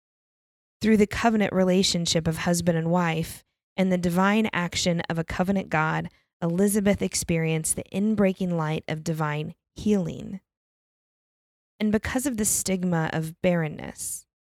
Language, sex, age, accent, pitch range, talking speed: English, female, 20-39, American, 165-200 Hz, 130 wpm